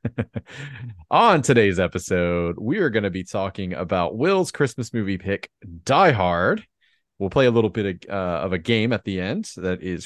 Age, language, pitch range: 30-49, English, 90-115 Hz